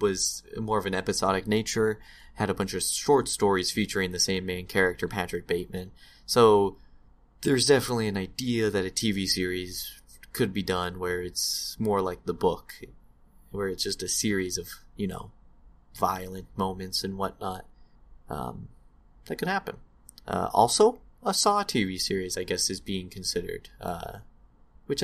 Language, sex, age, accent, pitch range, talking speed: English, male, 20-39, American, 90-125 Hz, 160 wpm